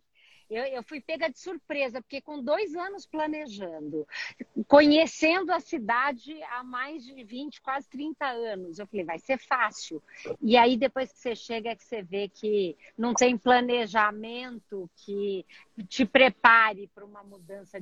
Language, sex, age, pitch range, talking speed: Portuguese, female, 50-69, 215-275 Hz, 150 wpm